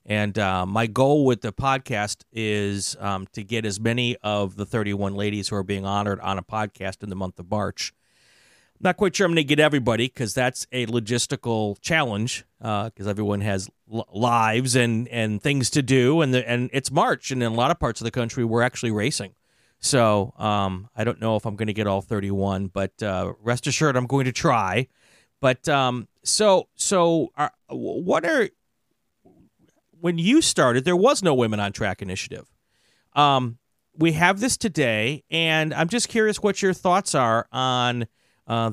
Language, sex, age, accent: English, male, 40-59, American